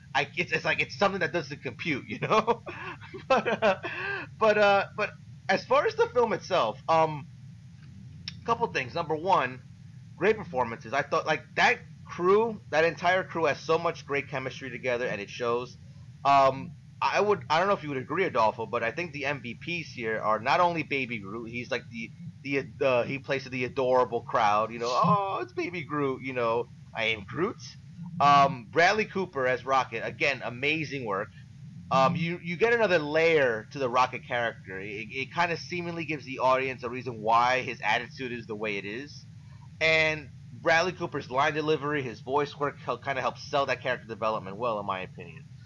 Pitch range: 125-160 Hz